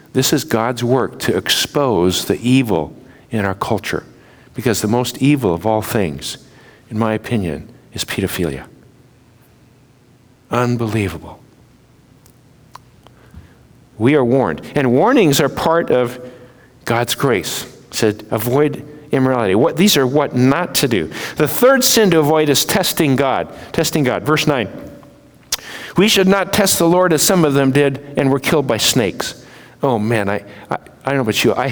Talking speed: 155 wpm